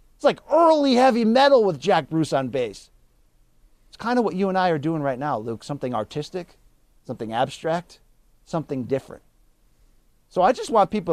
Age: 40-59